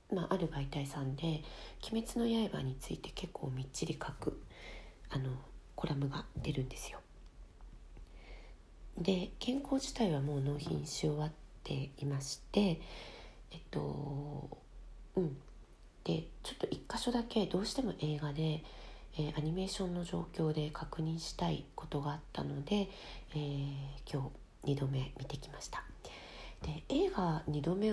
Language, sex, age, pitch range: Japanese, female, 40-59, 140-190 Hz